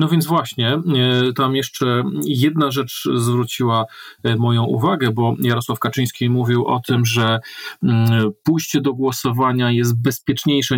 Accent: native